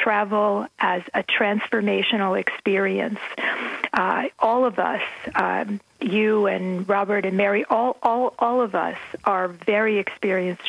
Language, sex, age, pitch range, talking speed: English, female, 40-59, 195-230 Hz, 130 wpm